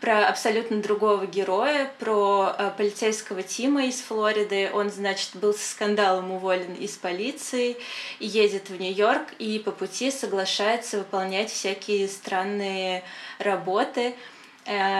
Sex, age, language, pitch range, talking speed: female, 20-39, Russian, 195-230 Hz, 120 wpm